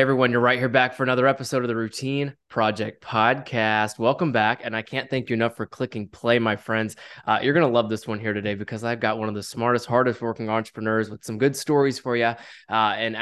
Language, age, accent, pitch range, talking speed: English, 20-39, American, 110-135 Hz, 240 wpm